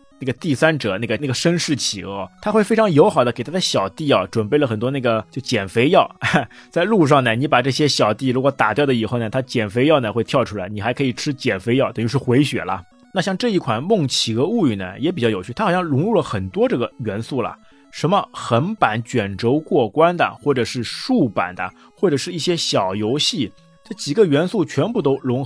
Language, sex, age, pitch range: Chinese, male, 20-39, 110-155 Hz